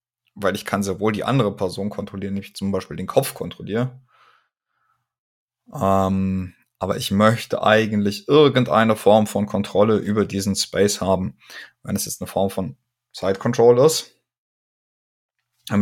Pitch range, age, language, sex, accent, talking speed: 100-120 Hz, 20-39, German, male, German, 140 wpm